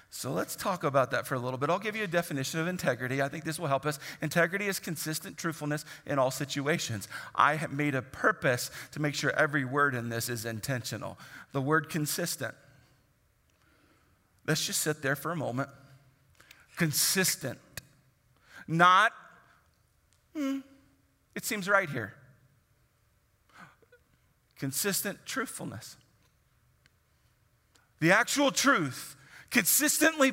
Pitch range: 125-185 Hz